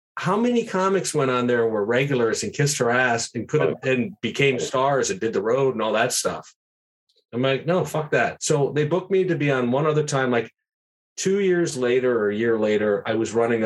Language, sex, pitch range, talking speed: English, male, 115-145 Hz, 230 wpm